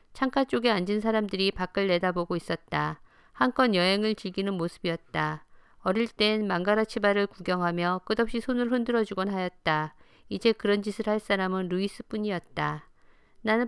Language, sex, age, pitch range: Korean, female, 50-69, 175-220 Hz